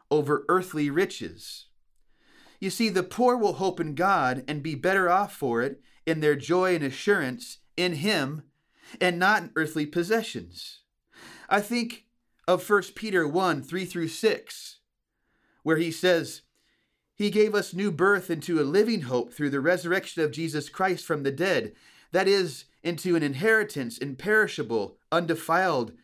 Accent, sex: American, male